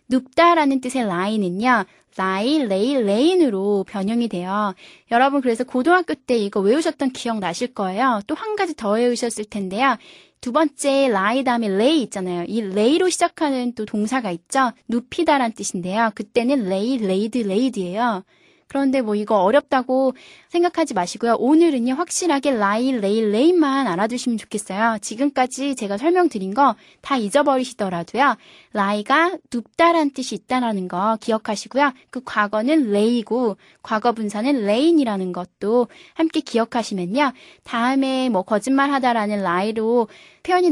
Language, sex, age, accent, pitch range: Korean, female, 20-39, native, 210-275 Hz